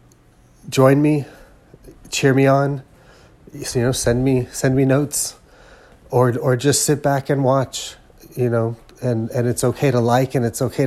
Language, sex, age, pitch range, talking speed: English, male, 30-49, 115-135 Hz, 165 wpm